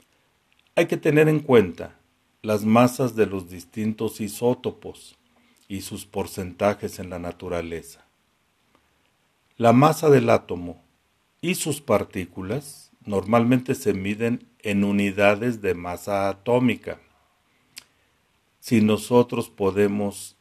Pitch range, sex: 95-125 Hz, male